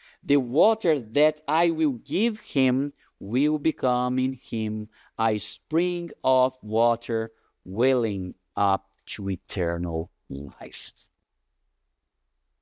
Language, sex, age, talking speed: English, male, 50-69, 95 wpm